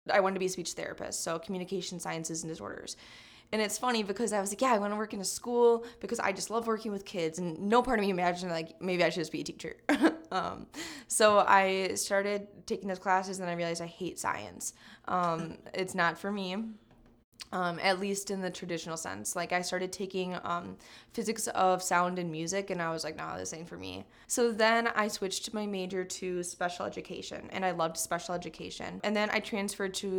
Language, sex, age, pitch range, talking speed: English, female, 20-39, 170-200 Hz, 220 wpm